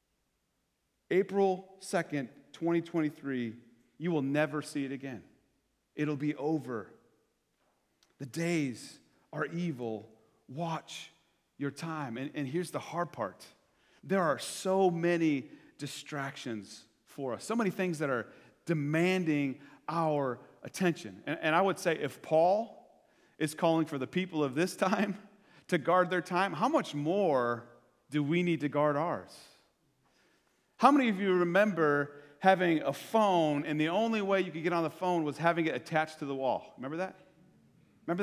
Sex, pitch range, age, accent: male, 140-170 Hz, 40-59, American